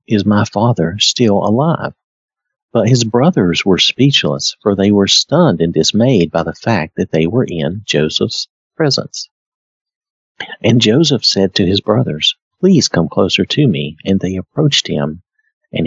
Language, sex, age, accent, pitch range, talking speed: English, male, 50-69, American, 85-120 Hz, 155 wpm